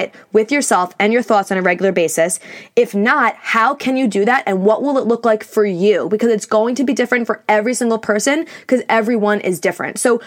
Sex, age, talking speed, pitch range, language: female, 20-39, 230 wpm, 205-265 Hz, English